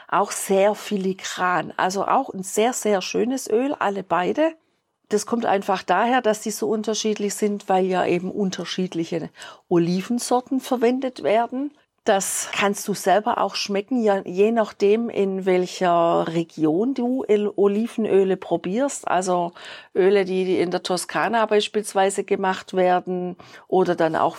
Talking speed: 135 wpm